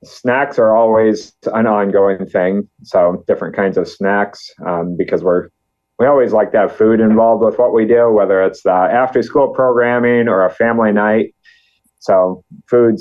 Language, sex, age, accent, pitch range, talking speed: English, male, 30-49, American, 95-120 Hz, 165 wpm